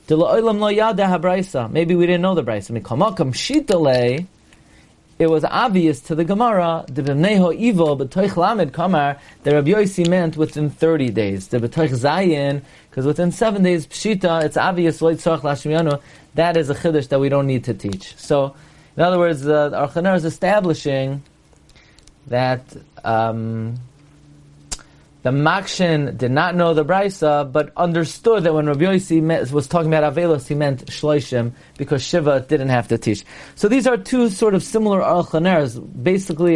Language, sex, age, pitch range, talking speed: English, male, 30-49, 140-180 Hz, 140 wpm